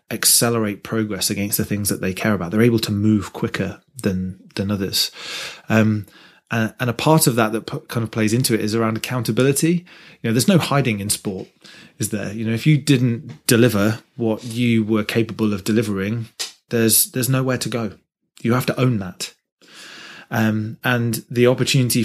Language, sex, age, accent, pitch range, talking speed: English, male, 20-39, British, 105-125 Hz, 190 wpm